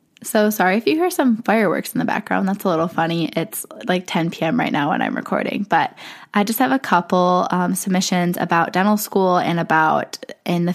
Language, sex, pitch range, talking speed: English, female, 170-205 Hz, 210 wpm